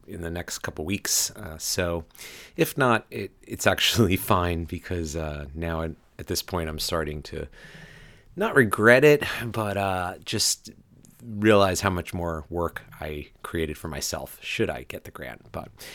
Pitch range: 80-100 Hz